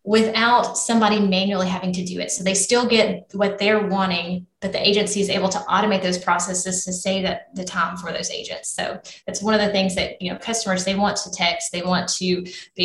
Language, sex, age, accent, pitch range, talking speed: English, female, 20-39, American, 180-205 Hz, 230 wpm